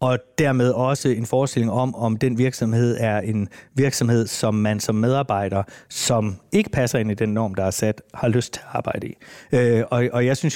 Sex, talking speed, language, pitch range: male, 210 wpm, Danish, 105-125 Hz